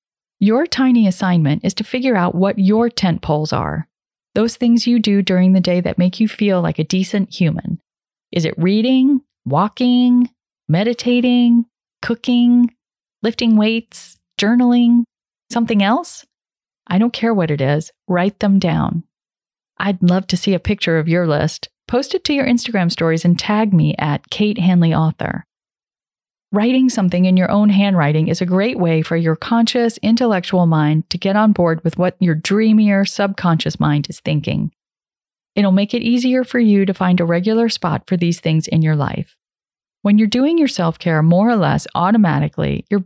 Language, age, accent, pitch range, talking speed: English, 40-59, American, 170-230 Hz, 170 wpm